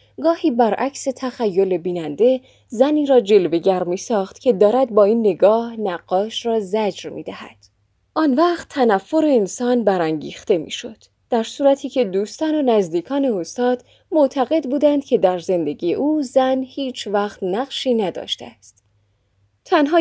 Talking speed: 140 wpm